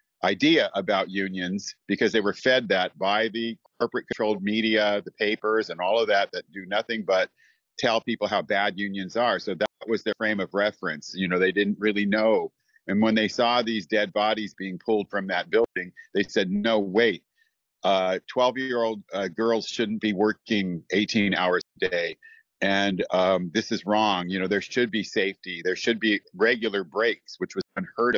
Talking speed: 185 wpm